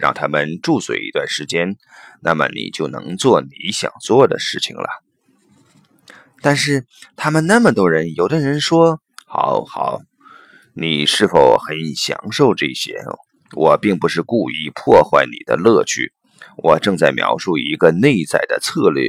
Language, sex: Chinese, male